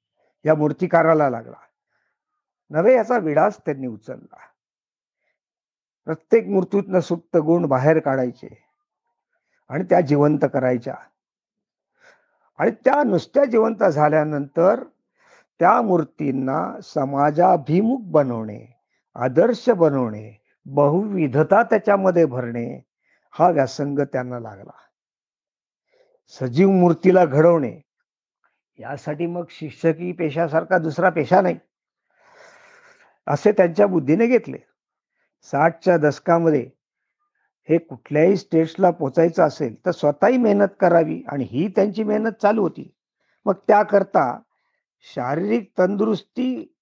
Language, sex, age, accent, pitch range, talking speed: Marathi, male, 50-69, native, 145-200 Hz, 90 wpm